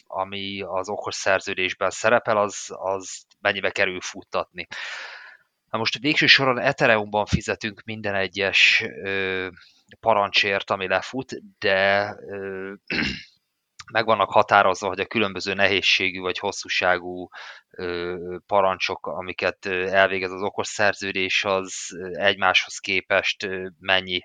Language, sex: Hungarian, male